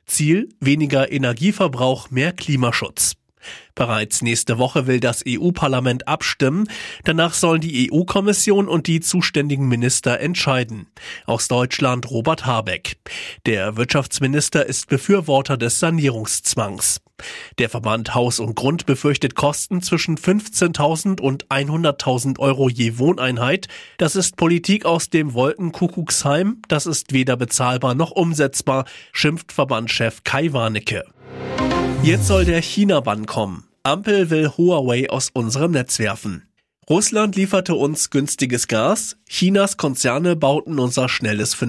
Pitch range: 120-165 Hz